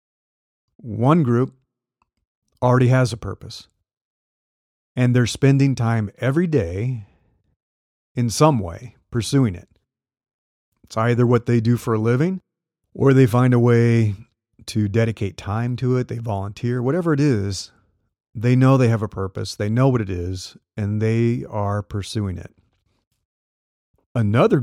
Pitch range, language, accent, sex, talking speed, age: 100-125 Hz, English, American, male, 140 wpm, 40-59